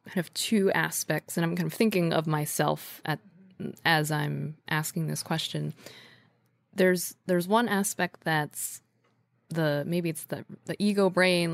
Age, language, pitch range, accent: 20-39, English, 155-185 Hz, American